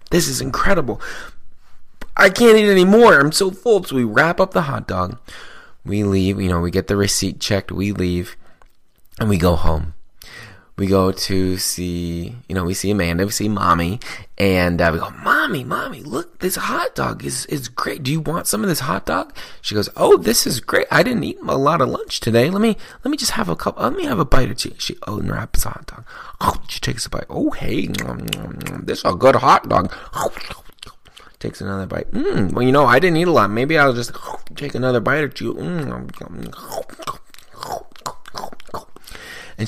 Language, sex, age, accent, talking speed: English, male, 20-39, American, 200 wpm